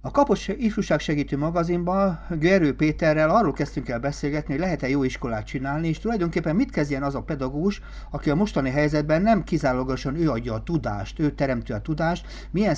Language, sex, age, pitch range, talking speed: Hungarian, male, 60-79, 125-155 Hz, 180 wpm